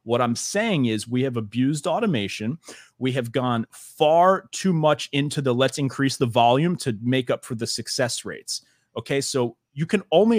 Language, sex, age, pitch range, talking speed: English, male, 30-49, 115-145 Hz, 185 wpm